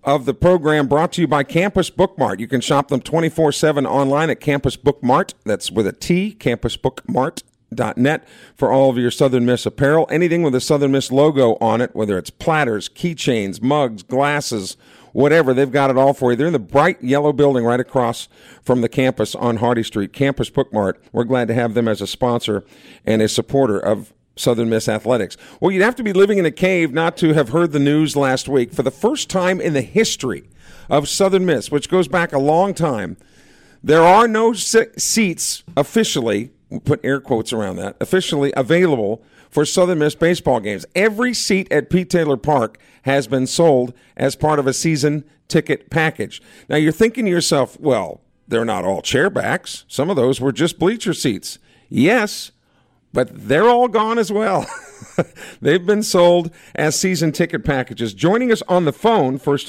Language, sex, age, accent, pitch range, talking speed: English, male, 50-69, American, 130-170 Hz, 185 wpm